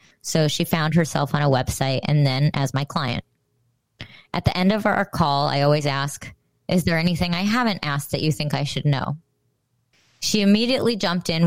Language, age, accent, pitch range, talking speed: English, 20-39, American, 145-200 Hz, 195 wpm